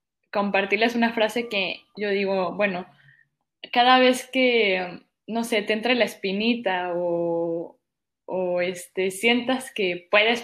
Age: 10-29